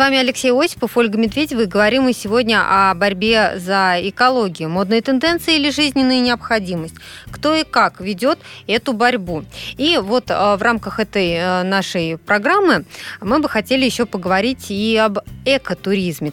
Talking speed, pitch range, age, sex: 145 wpm, 185-245 Hz, 20-39, female